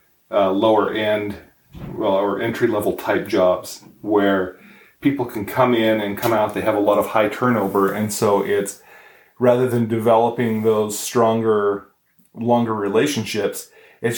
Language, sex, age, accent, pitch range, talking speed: English, male, 30-49, American, 105-125 Hz, 150 wpm